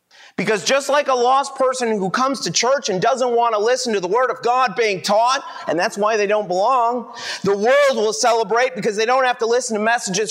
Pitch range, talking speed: 180-235 Hz, 235 wpm